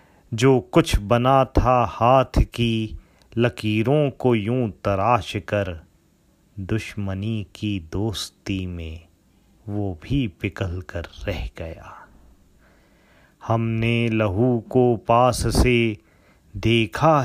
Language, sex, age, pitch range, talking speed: Hindi, male, 30-49, 95-120 Hz, 95 wpm